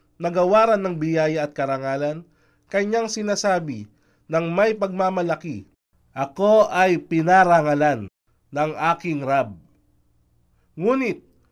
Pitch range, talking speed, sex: 135-210 Hz, 90 wpm, male